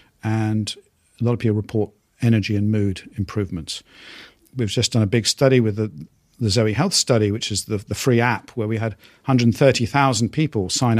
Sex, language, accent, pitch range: male, English, British, 105-125 Hz